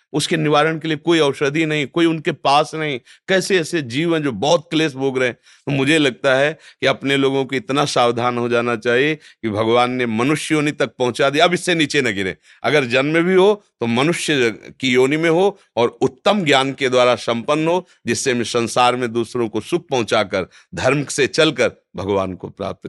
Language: Hindi